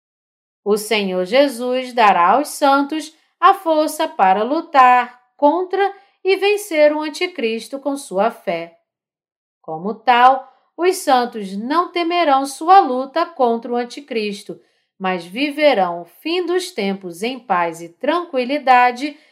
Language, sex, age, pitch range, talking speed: Portuguese, female, 40-59, 200-305 Hz, 120 wpm